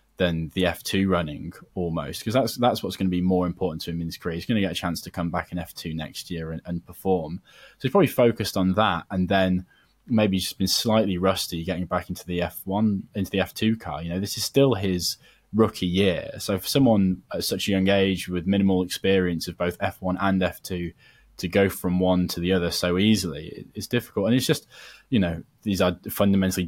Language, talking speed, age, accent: English, 225 wpm, 20-39, British